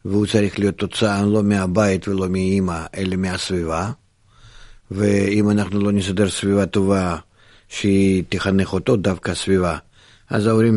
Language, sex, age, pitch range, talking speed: Hebrew, male, 50-69, 95-110 Hz, 130 wpm